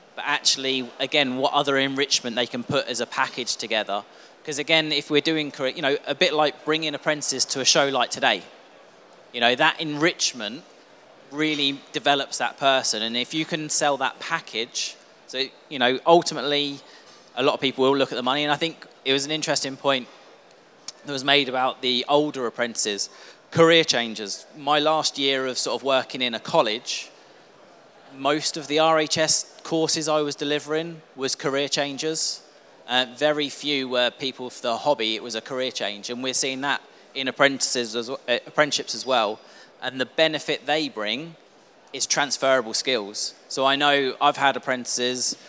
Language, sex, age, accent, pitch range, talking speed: English, male, 30-49, British, 130-150 Hz, 170 wpm